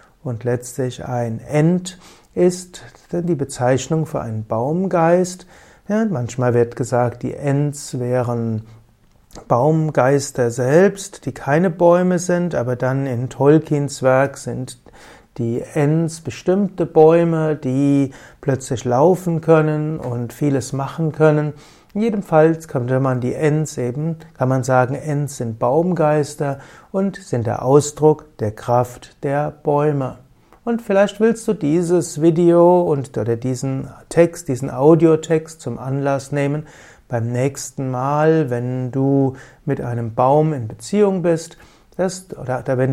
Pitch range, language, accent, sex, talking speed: 125-165 Hz, German, German, male, 130 wpm